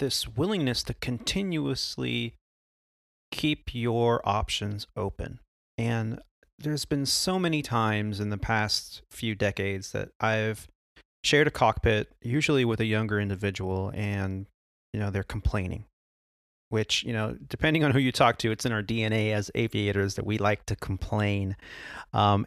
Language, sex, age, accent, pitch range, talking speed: English, male, 30-49, American, 100-130 Hz, 145 wpm